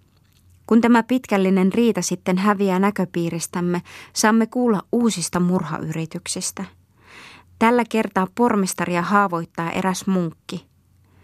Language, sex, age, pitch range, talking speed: Finnish, female, 20-39, 175-220 Hz, 90 wpm